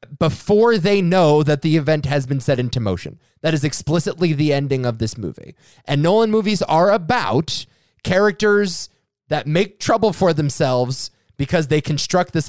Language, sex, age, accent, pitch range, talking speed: English, male, 20-39, American, 125-170 Hz, 165 wpm